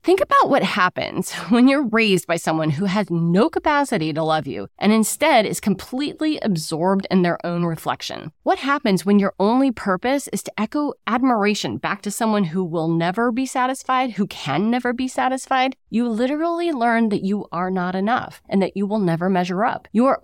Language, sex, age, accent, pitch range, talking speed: English, female, 30-49, American, 180-260 Hz, 195 wpm